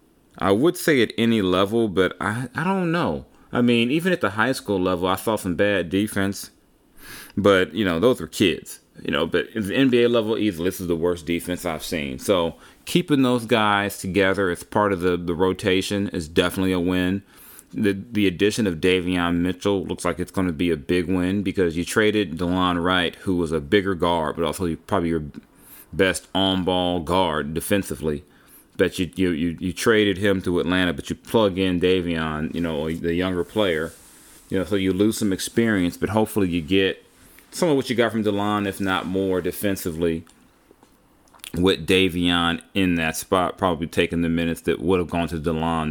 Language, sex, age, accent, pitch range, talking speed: English, male, 30-49, American, 85-100 Hz, 195 wpm